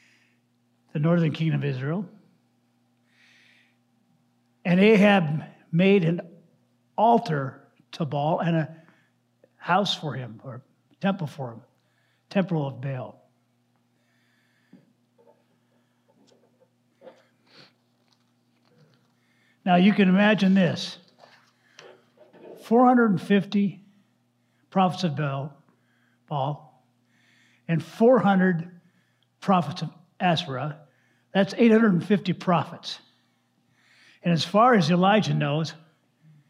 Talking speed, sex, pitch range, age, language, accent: 80 wpm, male, 120-180 Hz, 60-79, English, American